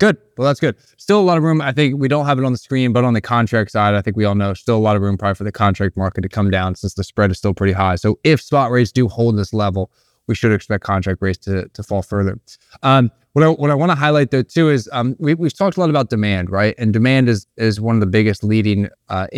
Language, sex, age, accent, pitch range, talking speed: English, male, 20-39, American, 100-125 Hz, 295 wpm